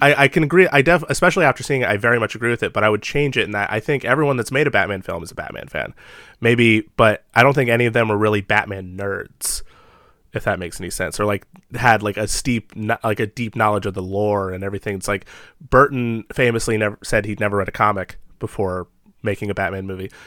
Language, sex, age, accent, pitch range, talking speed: English, male, 20-39, American, 100-120 Hz, 245 wpm